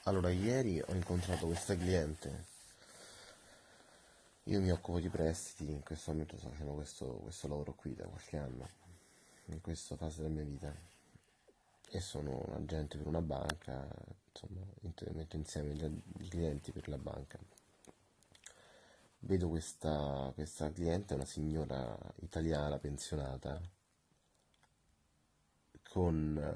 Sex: male